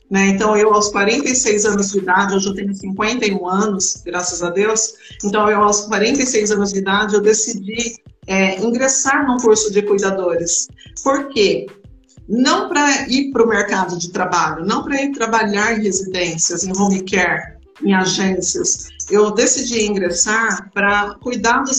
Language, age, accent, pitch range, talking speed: Portuguese, 50-69, Brazilian, 200-255 Hz, 155 wpm